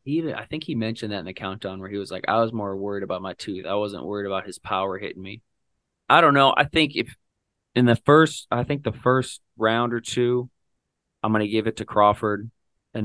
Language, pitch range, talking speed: English, 105-120 Hz, 240 wpm